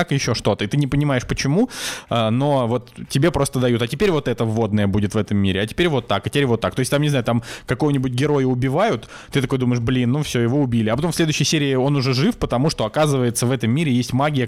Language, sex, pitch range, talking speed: Russian, male, 115-140 Hz, 260 wpm